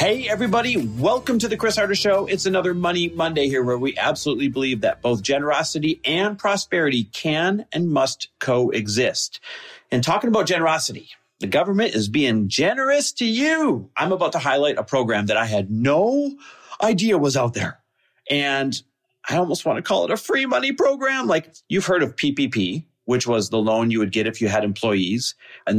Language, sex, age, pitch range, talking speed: English, male, 40-59, 110-185 Hz, 185 wpm